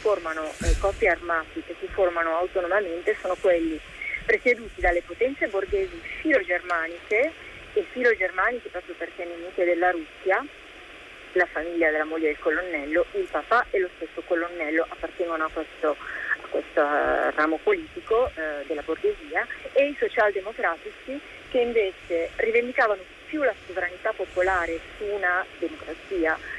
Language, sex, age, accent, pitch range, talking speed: Italian, female, 30-49, native, 170-245 Hz, 135 wpm